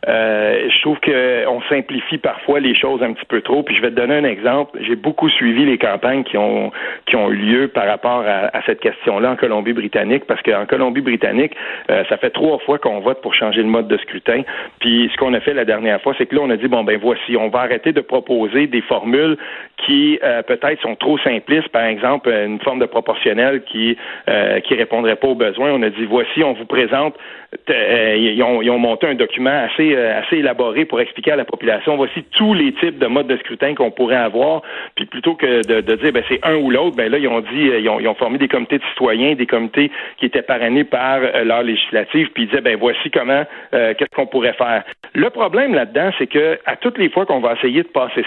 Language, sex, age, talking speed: French, male, 40-59, 235 wpm